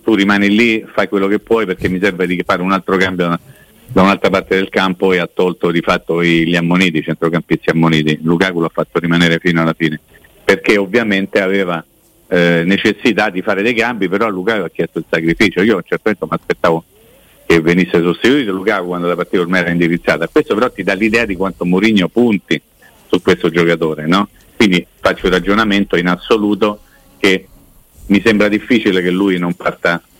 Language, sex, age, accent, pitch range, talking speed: Italian, male, 50-69, native, 85-105 Hz, 190 wpm